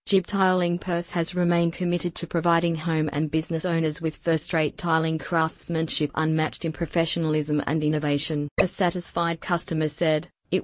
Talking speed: 145 wpm